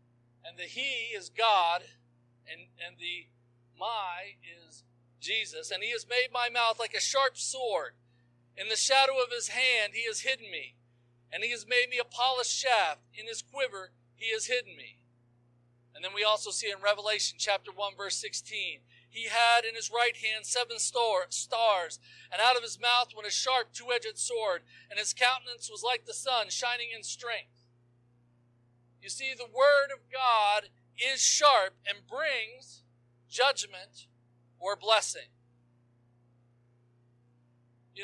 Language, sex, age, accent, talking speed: English, male, 40-59, American, 160 wpm